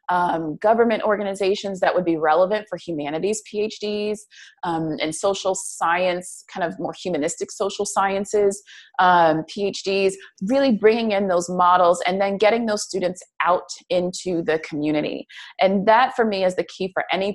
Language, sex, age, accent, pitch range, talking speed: English, female, 30-49, American, 165-210 Hz, 155 wpm